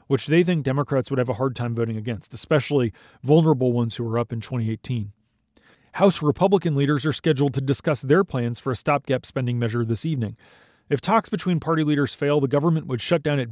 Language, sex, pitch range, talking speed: English, male, 120-155 Hz, 210 wpm